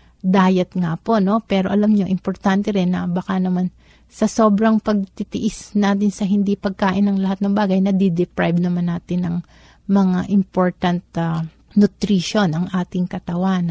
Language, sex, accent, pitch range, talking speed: Filipino, female, native, 175-200 Hz, 150 wpm